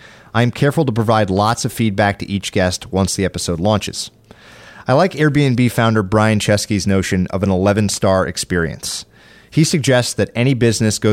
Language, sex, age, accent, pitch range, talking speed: English, male, 30-49, American, 100-130 Hz, 180 wpm